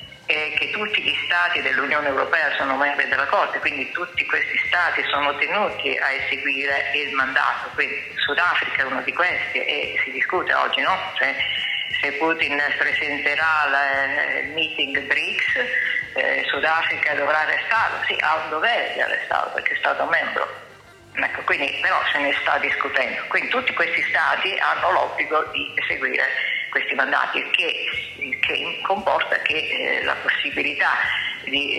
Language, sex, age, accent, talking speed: Italian, female, 40-59, native, 150 wpm